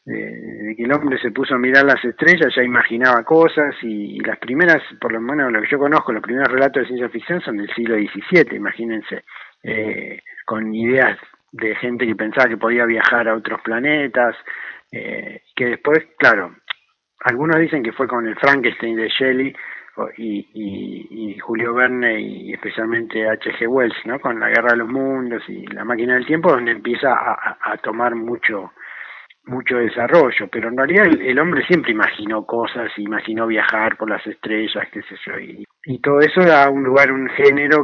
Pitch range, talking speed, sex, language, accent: 110-135 Hz, 185 wpm, male, Spanish, Argentinian